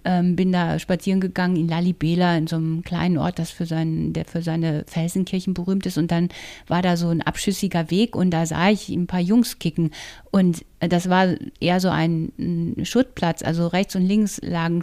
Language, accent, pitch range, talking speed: German, German, 175-210 Hz, 195 wpm